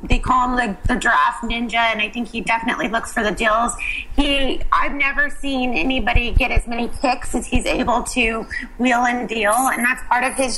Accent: American